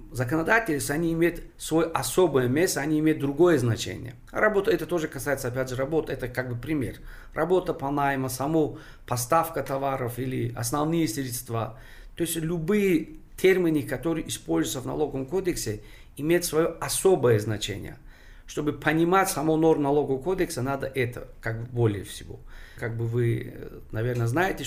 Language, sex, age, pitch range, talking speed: Russian, male, 40-59, 120-160 Hz, 145 wpm